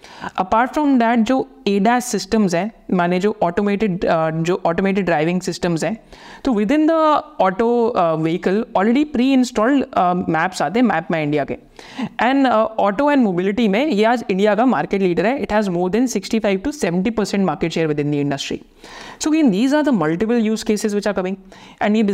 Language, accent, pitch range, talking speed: Hindi, native, 190-235 Hz, 195 wpm